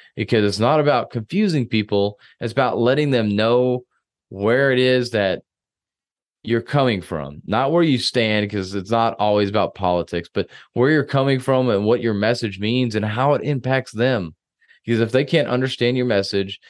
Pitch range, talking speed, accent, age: 100-125 Hz, 180 wpm, American, 20-39